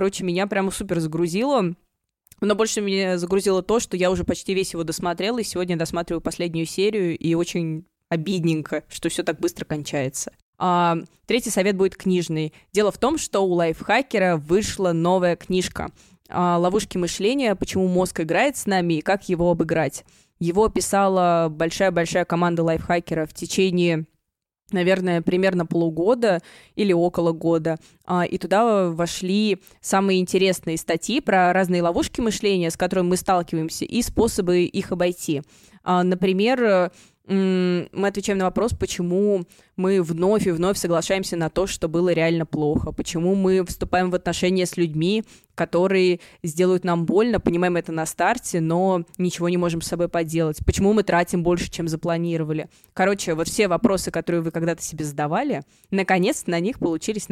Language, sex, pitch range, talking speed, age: Russian, female, 170-195 Hz, 150 wpm, 20-39